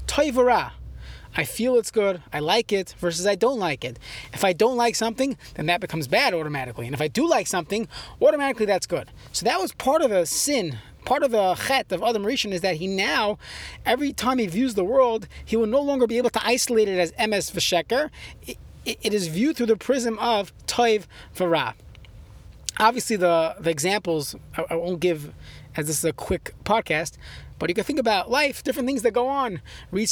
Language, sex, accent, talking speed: English, male, American, 205 wpm